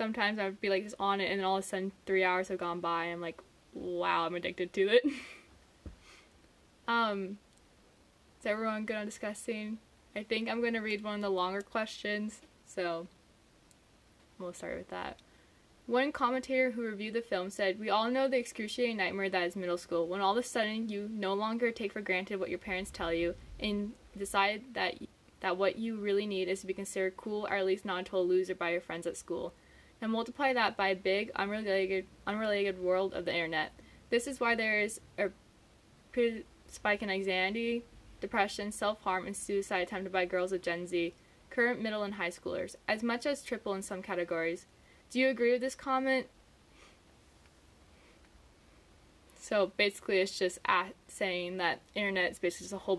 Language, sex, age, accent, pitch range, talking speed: English, female, 10-29, American, 180-215 Hz, 190 wpm